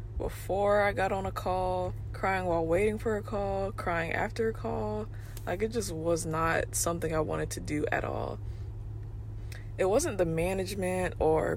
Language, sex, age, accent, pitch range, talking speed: English, female, 20-39, American, 105-180 Hz, 170 wpm